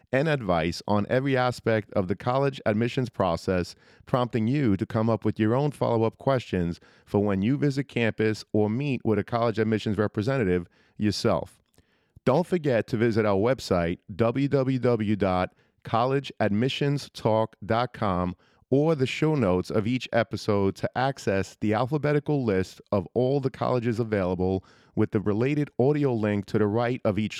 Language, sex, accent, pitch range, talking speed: English, male, American, 105-135 Hz, 145 wpm